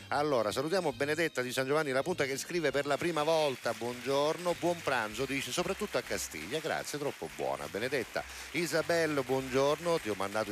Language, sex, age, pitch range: Italian, male, 50-69, 115-155 Hz